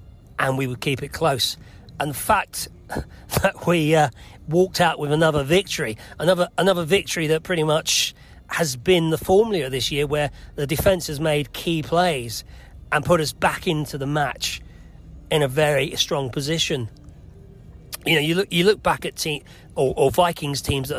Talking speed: 175 wpm